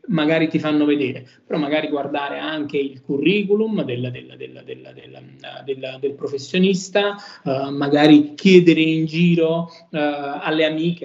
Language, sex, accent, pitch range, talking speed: Italian, male, native, 140-170 Hz, 140 wpm